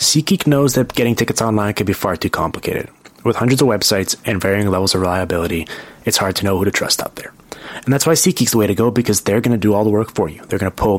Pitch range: 95-115 Hz